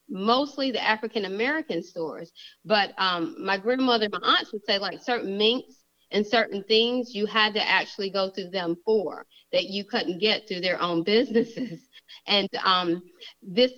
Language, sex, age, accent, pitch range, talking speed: English, female, 30-49, American, 185-235 Hz, 165 wpm